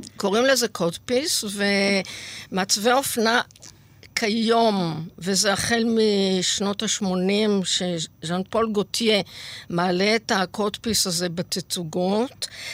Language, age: Hebrew, 50-69